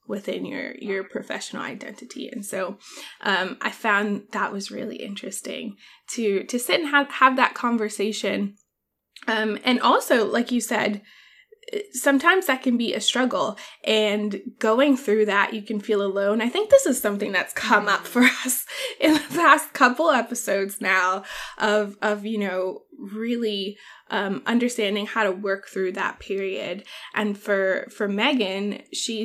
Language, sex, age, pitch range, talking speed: English, female, 20-39, 200-250 Hz, 155 wpm